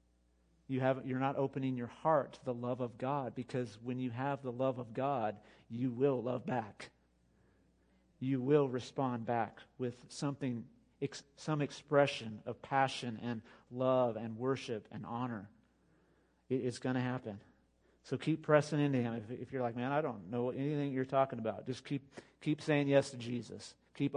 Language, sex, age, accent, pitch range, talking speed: English, male, 40-59, American, 115-135 Hz, 175 wpm